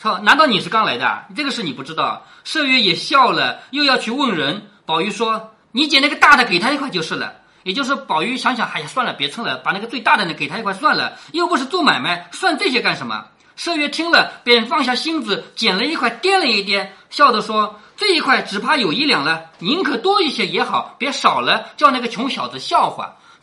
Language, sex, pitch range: Chinese, male, 210-350 Hz